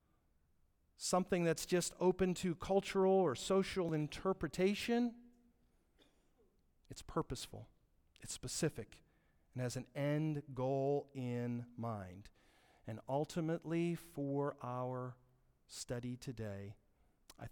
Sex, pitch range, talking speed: male, 110-165 Hz, 95 wpm